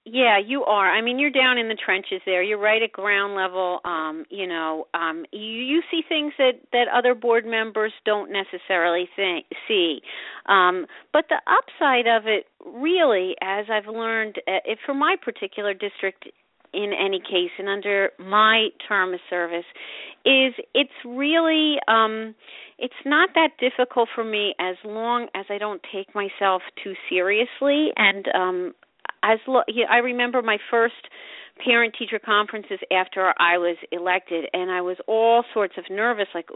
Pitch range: 185-240 Hz